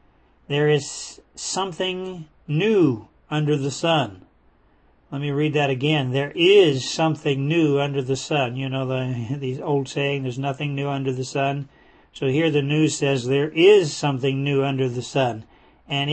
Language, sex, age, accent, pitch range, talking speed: English, male, 50-69, American, 135-155 Hz, 165 wpm